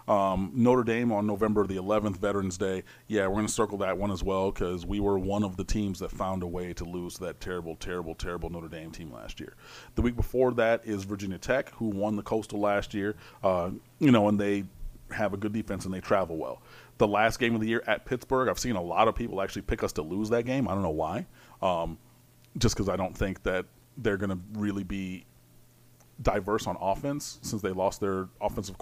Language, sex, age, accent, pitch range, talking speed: English, male, 30-49, American, 95-115 Hz, 235 wpm